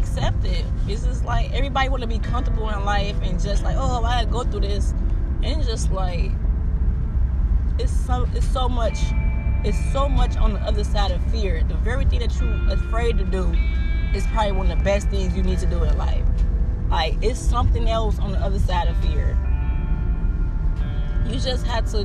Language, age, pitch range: English, 20-39, 75-90 Hz